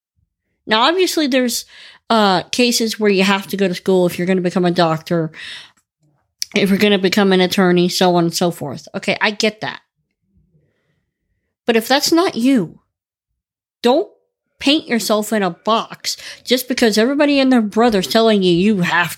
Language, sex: English, female